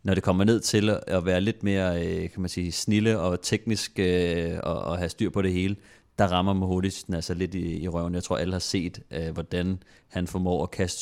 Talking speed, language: 190 wpm, Danish